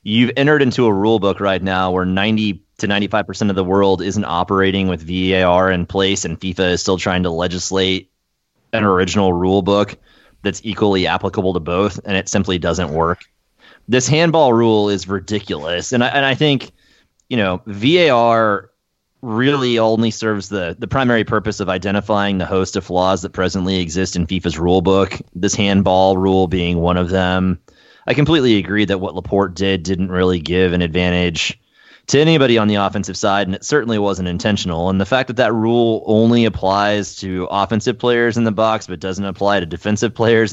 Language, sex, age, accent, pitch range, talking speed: English, male, 30-49, American, 95-115 Hz, 185 wpm